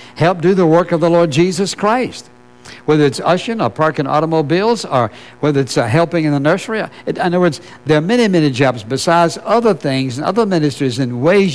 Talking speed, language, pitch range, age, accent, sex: 205 wpm, English, 130-170 Hz, 60-79, American, male